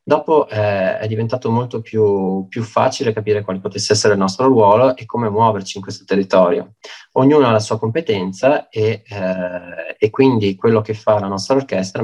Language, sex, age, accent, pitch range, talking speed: Italian, male, 20-39, native, 95-115 Hz, 180 wpm